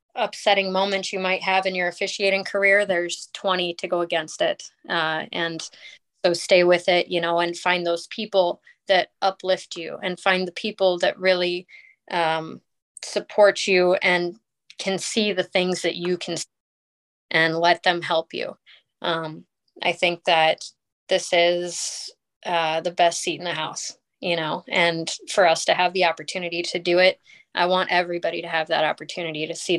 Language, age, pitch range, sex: English, 20-39, 170-190 Hz, female